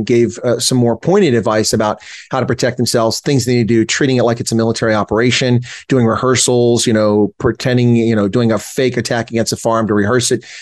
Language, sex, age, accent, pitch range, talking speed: English, male, 30-49, American, 110-125 Hz, 225 wpm